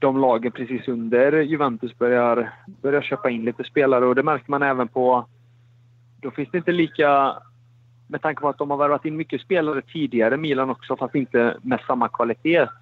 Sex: male